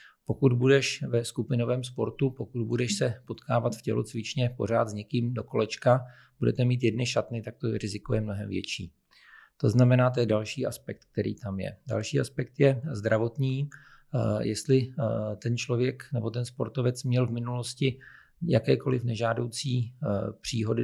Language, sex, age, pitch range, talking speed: Czech, male, 40-59, 110-125 Hz, 145 wpm